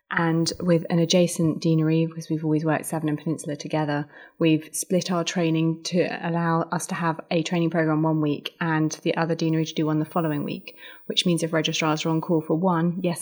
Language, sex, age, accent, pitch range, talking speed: English, female, 30-49, British, 155-175 Hz, 215 wpm